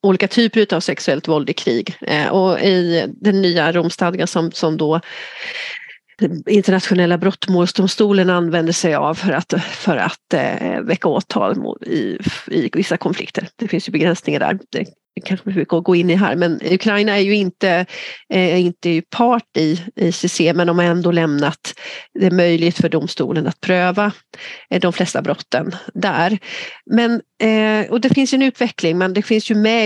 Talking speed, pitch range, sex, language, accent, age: 155 wpm, 170-210 Hz, female, Swedish, native, 40-59